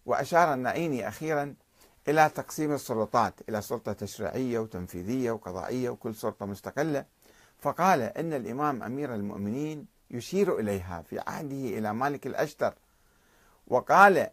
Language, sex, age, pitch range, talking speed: Arabic, male, 50-69, 110-150 Hz, 115 wpm